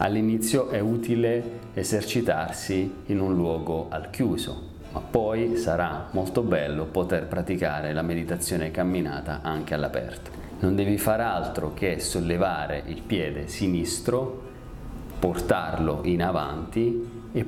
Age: 40-59